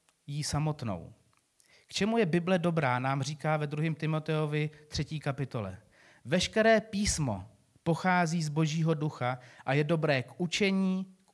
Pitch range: 135-170 Hz